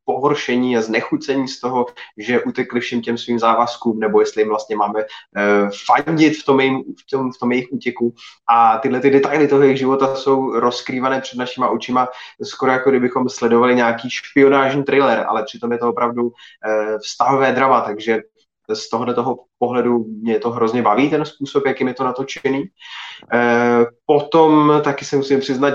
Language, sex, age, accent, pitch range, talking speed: Czech, male, 20-39, native, 115-135 Hz, 160 wpm